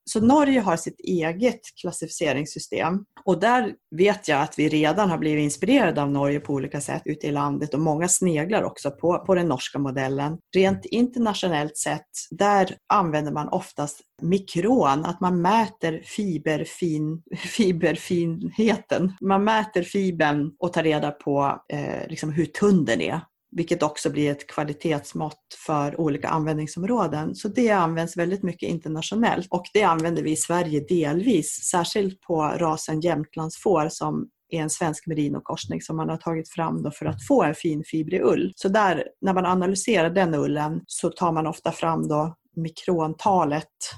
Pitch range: 150-190 Hz